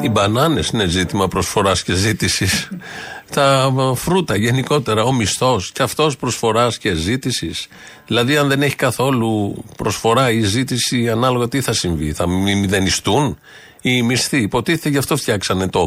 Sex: male